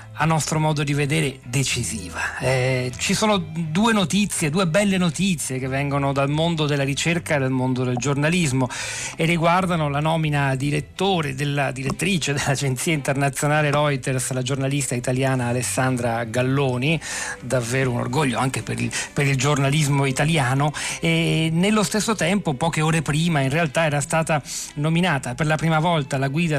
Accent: native